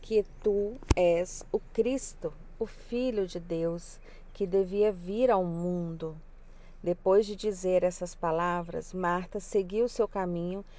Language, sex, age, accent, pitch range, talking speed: Portuguese, female, 40-59, Brazilian, 175-215 Hz, 130 wpm